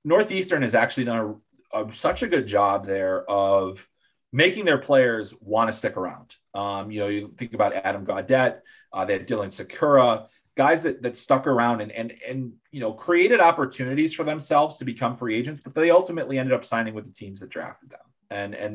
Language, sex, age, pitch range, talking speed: English, male, 30-49, 105-135 Hz, 205 wpm